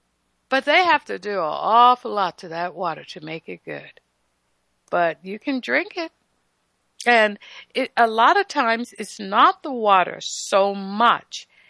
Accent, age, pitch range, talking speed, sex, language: American, 60-79, 185-255 Hz, 165 wpm, female, English